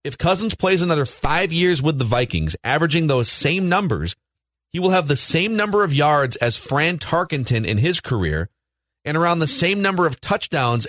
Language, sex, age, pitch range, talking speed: English, male, 30-49, 115-160 Hz, 185 wpm